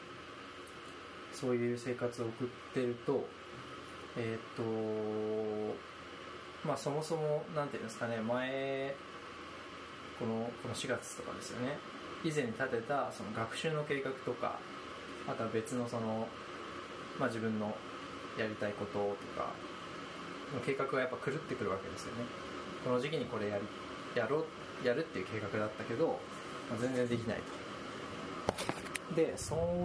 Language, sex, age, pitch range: Japanese, male, 20-39, 110-145 Hz